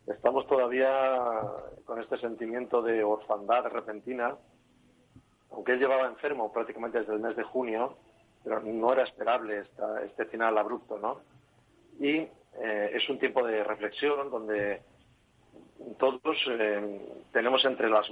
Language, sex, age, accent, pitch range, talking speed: Spanish, male, 40-59, Spanish, 110-130 Hz, 130 wpm